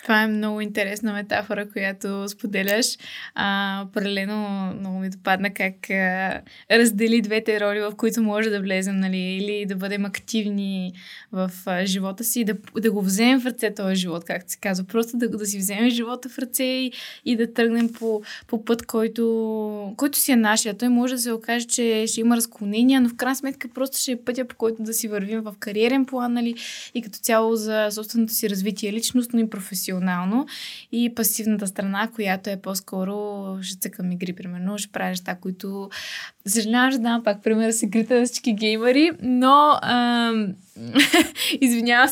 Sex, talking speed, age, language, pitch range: female, 175 wpm, 20-39, Bulgarian, 200-240 Hz